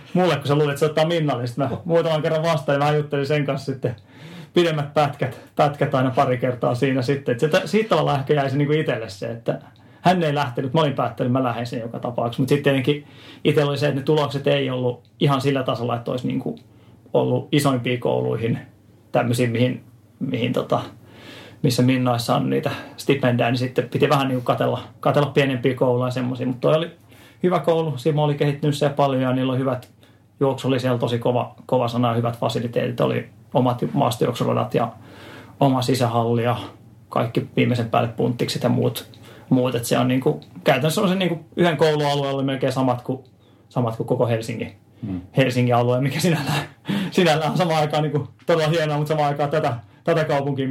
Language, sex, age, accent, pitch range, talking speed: Finnish, male, 30-49, native, 125-150 Hz, 175 wpm